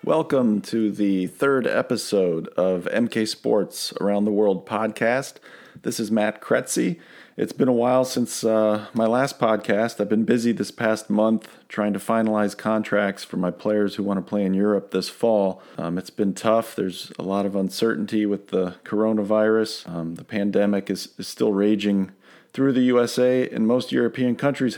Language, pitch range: English, 100-115 Hz